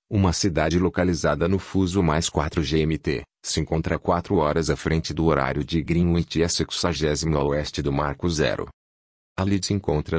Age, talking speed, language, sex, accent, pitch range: 30-49, 170 wpm, Portuguese, male, Brazilian, 75-95 Hz